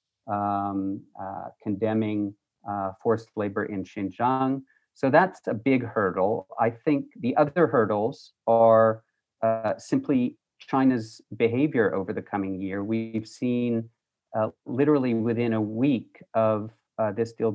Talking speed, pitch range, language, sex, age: 130 wpm, 105-120 Hz, English, male, 40-59